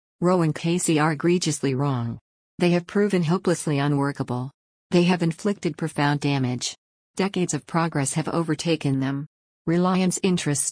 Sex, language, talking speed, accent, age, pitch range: female, English, 135 wpm, American, 50-69, 145-170 Hz